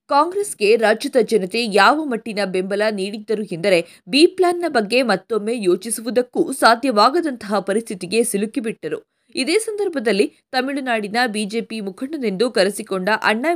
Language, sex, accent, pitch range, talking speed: Kannada, female, native, 200-265 Hz, 100 wpm